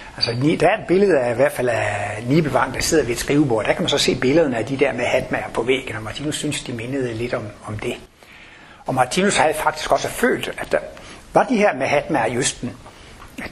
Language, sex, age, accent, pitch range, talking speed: Danish, male, 60-79, native, 125-165 Hz, 230 wpm